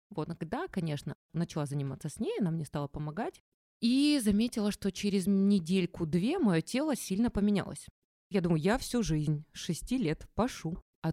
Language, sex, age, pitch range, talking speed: Russian, female, 20-39, 155-205 Hz, 160 wpm